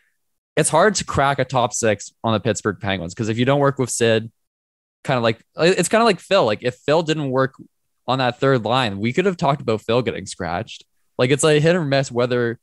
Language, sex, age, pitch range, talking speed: English, male, 20-39, 100-125 Hz, 240 wpm